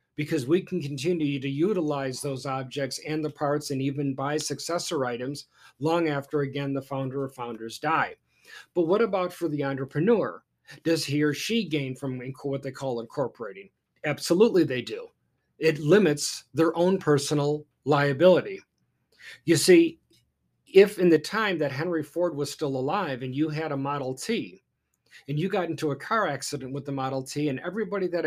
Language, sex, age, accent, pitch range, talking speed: English, male, 40-59, American, 140-175 Hz, 170 wpm